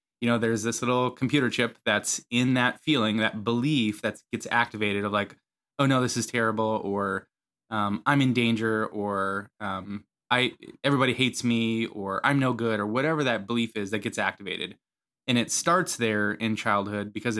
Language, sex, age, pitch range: English, male, 20-39, 105-125 Hz